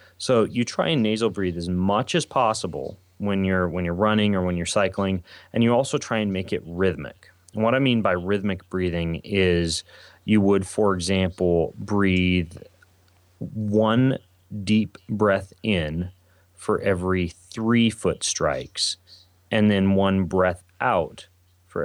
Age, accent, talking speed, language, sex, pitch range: 30-49, American, 150 wpm, English, male, 90-110 Hz